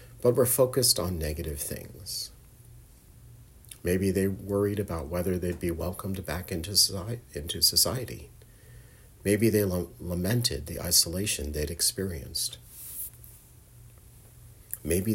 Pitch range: 80-110 Hz